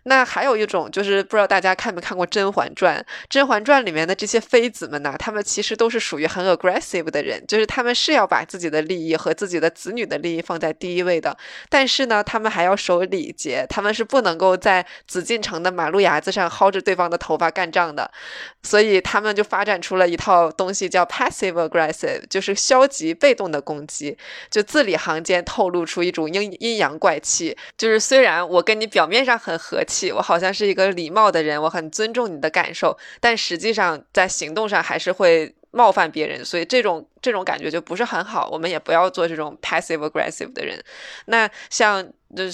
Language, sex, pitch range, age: Chinese, female, 170-220 Hz, 20-39